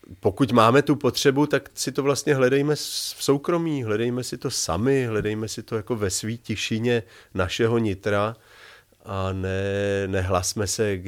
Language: Czech